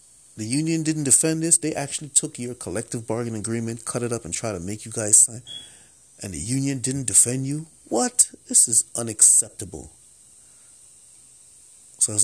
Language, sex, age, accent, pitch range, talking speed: English, male, 30-49, American, 95-125 Hz, 170 wpm